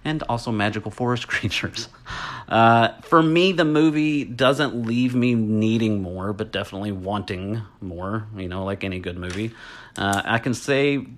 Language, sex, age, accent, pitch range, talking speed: English, male, 30-49, American, 100-125 Hz, 155 wpm